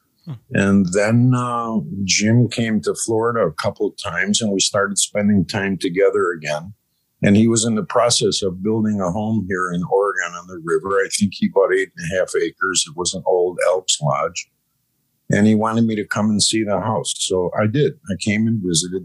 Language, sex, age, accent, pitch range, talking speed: English, male, 50-69, American, 95-115 Hz, 210 wpm